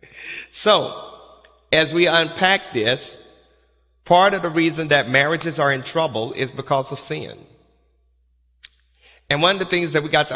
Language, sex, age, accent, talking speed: English, male, 50-69, American, 155 wpm